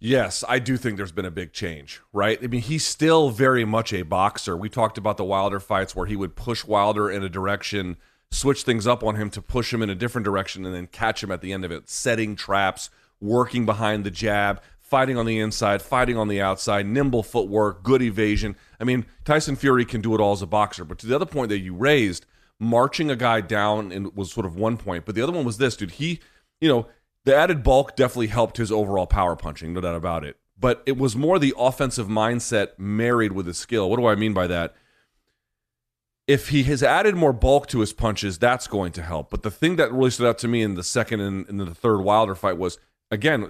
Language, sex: English, male